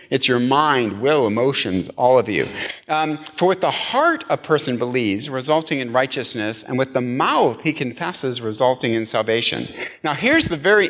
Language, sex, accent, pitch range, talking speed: English, male, American, 125-175 Hz, 175 wpm